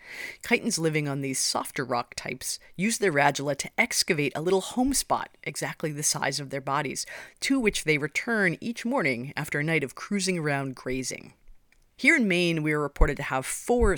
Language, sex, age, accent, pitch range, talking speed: English, female, 30-49, American, 140-185 Hz, 190 wpm